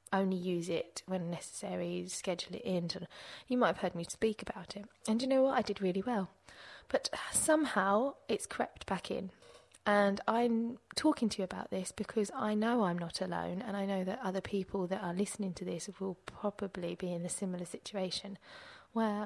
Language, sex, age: English, female, 20-39